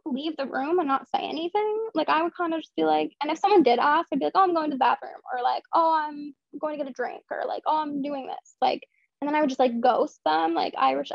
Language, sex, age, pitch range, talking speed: English, female, 10-29, 250-295 Hz, 295 wpm